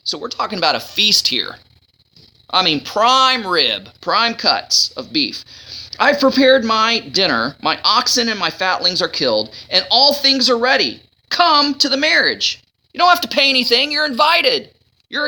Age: 30-49